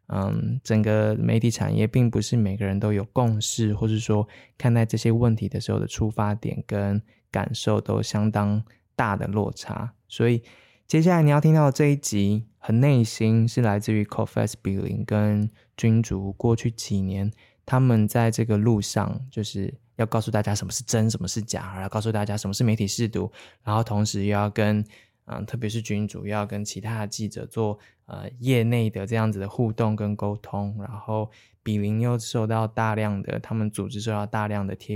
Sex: male